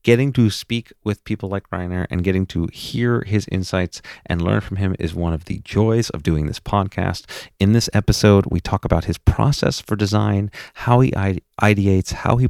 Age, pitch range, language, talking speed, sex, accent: 40-59, 90-115 Hz, English, 195 wpm, male, American